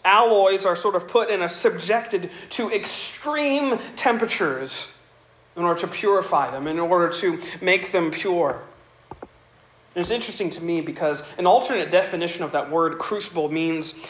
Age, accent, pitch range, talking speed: 40-59, American, 175-225 Hz, 155 wpm